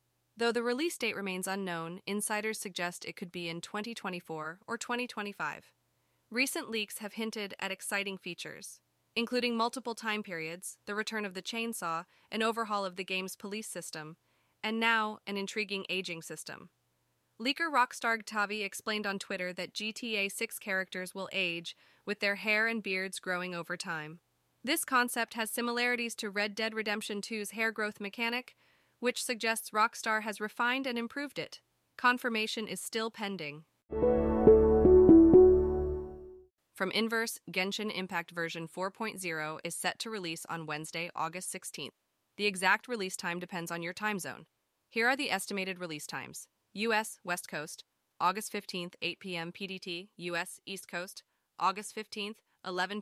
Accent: American